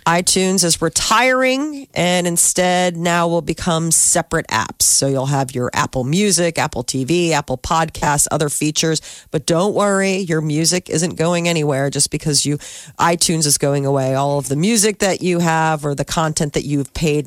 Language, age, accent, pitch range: Japanese, 40-59, American, 150-195 Hz